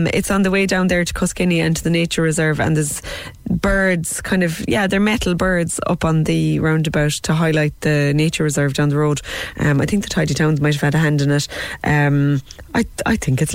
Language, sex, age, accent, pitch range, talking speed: English, female, 20-39, Irish, 145-180 Hz, 230 wpm